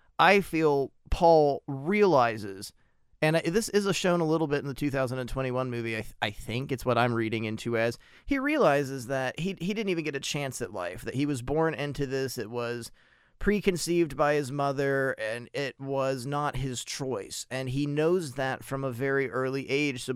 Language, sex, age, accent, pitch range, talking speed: English, male, 30-49, American, 130-160 Hz, 195 wpm